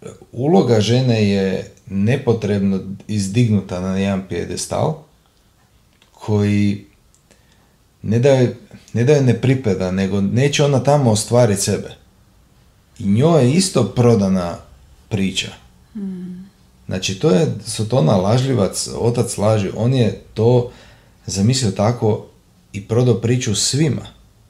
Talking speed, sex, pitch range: 105 wpm, male, 95-115 Hz